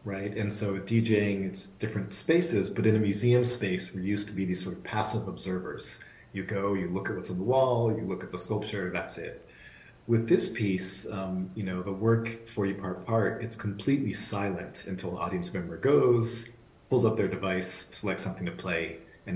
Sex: male